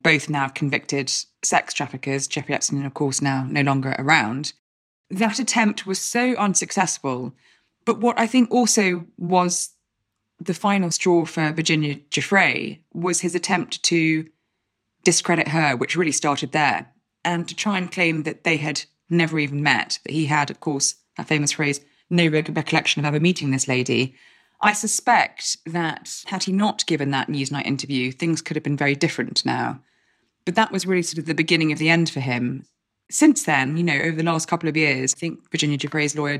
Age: 20-39